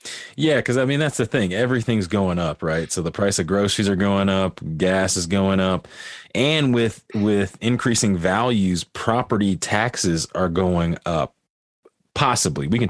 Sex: male